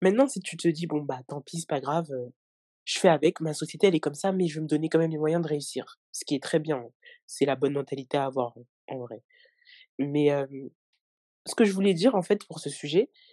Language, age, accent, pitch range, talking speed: French, 20-39, French, 140-190 Hz, 265 wpm